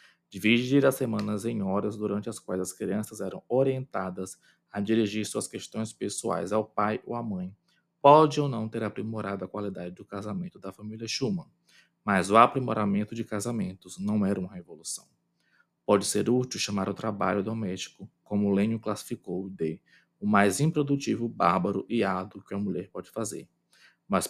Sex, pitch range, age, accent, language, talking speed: male, 100-115 Hz, 20-39, Brazilian, Portuguese, 165 wpm